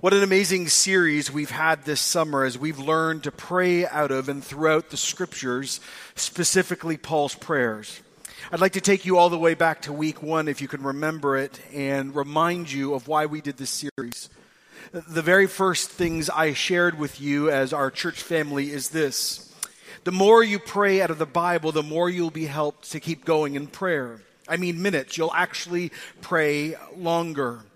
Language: English